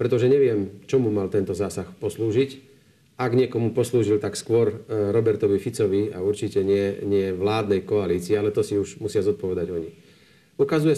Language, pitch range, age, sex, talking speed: Slovak, 100-120 Hz, 40-59, male, 155 wpm